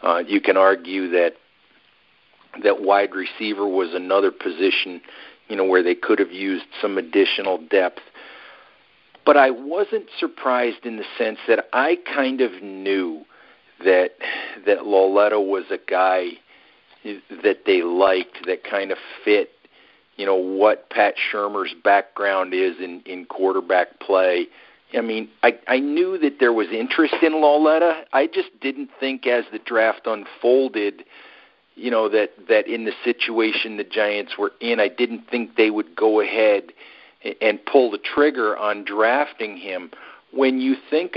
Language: English